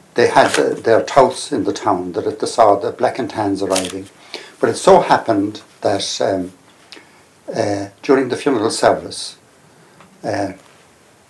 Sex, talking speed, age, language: male, 145 wpm, 60-79, English